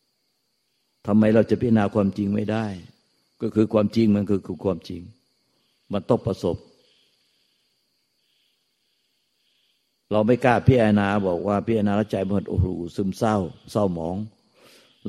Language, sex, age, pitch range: Thai, male, 60-79, 100-110 Hz